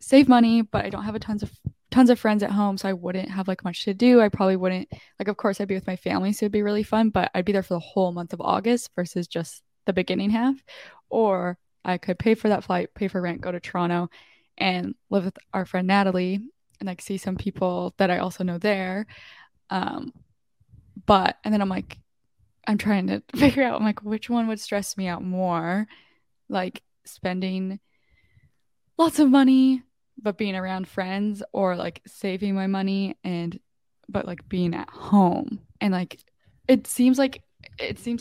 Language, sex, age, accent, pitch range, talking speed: English, female, 10-29, American, 185-215 Hz, 205 wpm